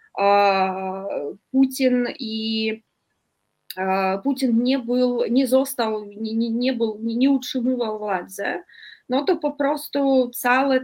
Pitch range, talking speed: 220-275 Hz, 100 wpm